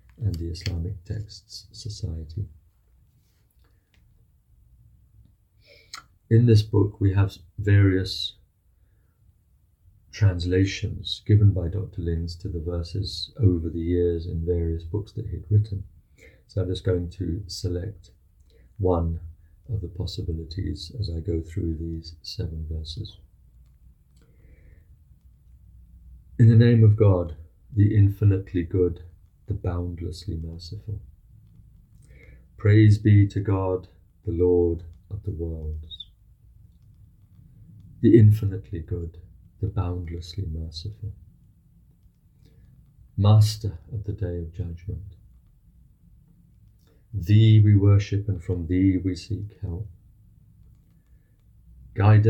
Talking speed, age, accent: 100 wpm, 50-69, British